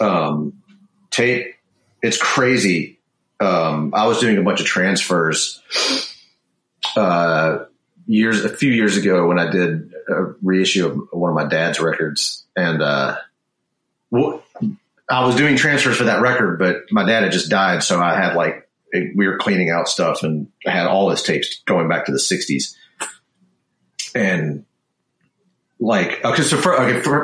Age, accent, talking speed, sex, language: 40-59, American, 160 wpm, male, English